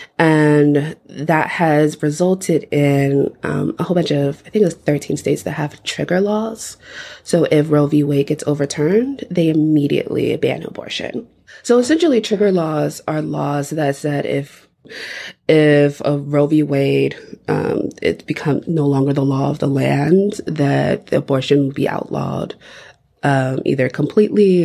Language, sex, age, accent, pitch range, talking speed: English, female, 20-39, American, 145-185 Hz, 155 wpm